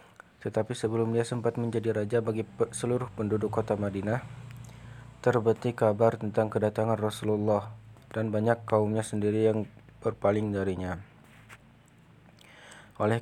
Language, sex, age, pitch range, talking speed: Indonesian, male, 20-39, 105-115 Hz, 110 wpm